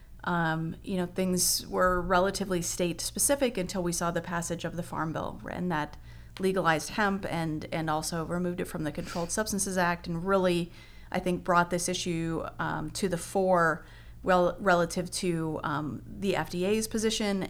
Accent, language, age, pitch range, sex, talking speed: American, English, 30-49, 165-190 Hz, female, 170 wpm